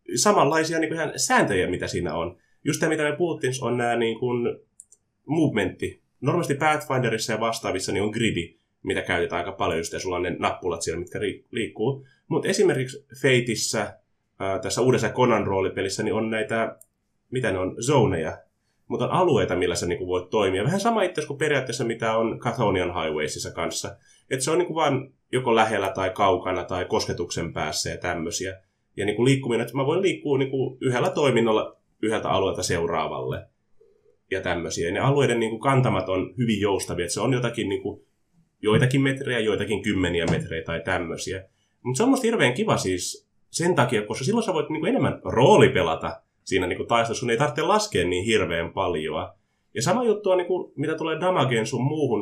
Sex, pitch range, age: male, 105-150 Hz, 20-39